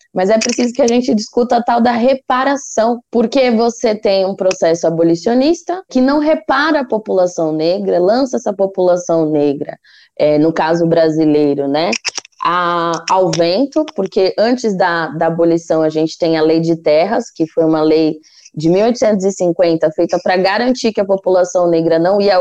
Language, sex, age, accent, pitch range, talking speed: Portuguese, female, 20-39, Brazilian, 170-250 Hz, 165 wpm